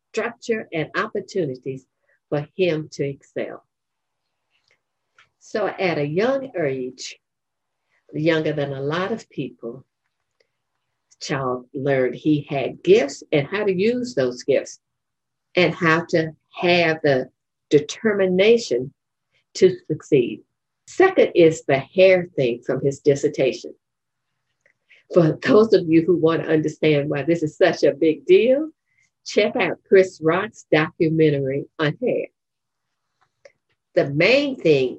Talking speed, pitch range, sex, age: 120 wpm, 150-200 Hz, female, 50-69